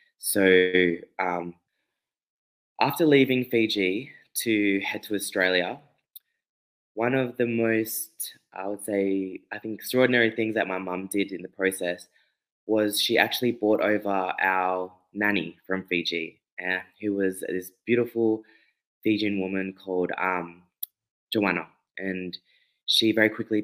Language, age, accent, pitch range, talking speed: English, 20-39, Australian, 95-110 Hz, 125 wpm